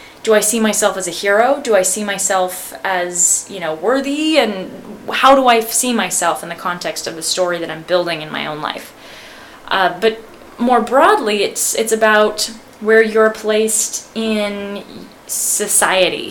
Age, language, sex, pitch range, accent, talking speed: 20-39, English, female, 180-225 Hz, American, 170 wpm